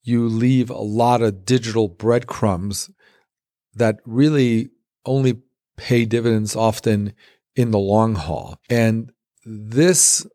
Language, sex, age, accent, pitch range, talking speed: English, male, 50-69, American, 105-125 Hz, 110 wpm